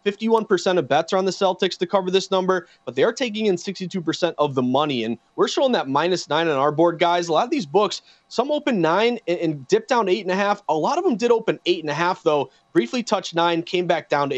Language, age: English, 30-49